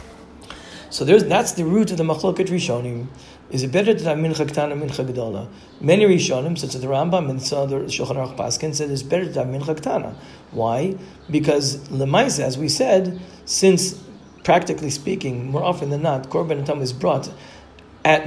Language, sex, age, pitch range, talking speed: English, male, 40-59, 135-180 Hz, 170 wpm